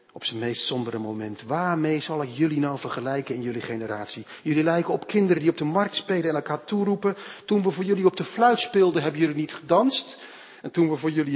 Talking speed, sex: 225 wpm, male